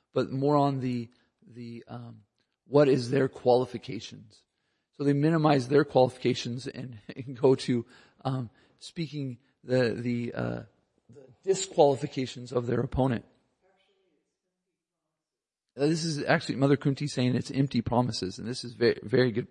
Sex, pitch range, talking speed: male, 120-135 Hz, 135 wpm